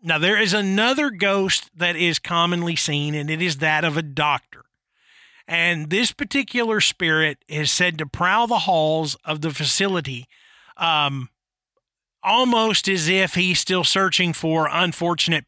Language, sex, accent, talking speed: English, male, American, 145 wpm